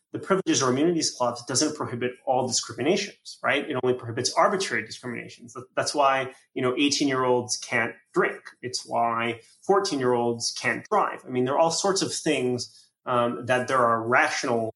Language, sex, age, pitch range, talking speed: English, male, 30-49, 120-135 Hz, 165 wpm